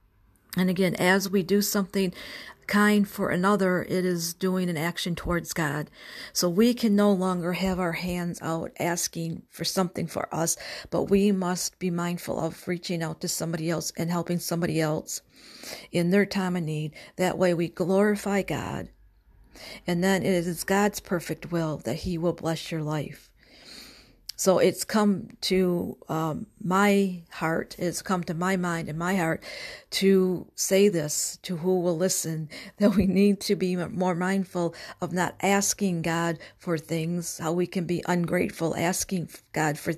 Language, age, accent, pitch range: English, 50-69, American, 165-185 Hz